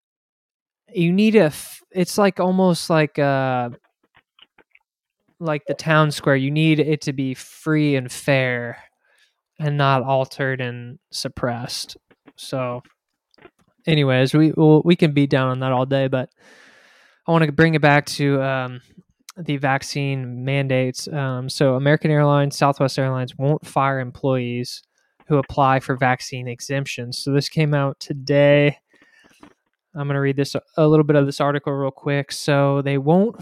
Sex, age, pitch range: male, 20-39, 135-155 Hz